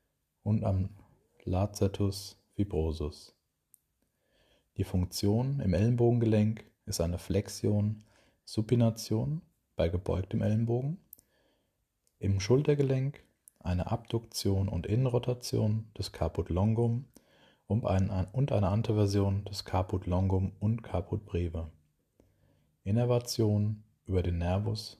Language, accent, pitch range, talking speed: German, German, 95-110 Hz, 90 wpm